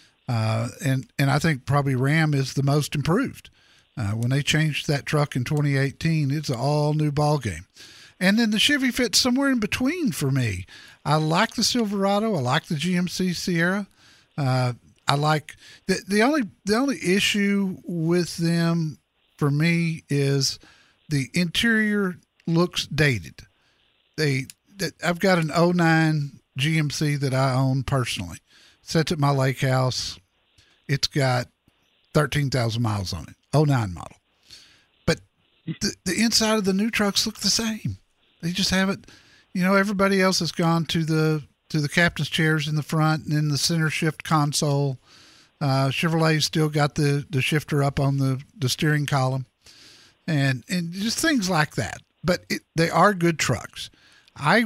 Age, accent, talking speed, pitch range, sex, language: 50-69, American, 160 wpm, 135-180 Hz, male, English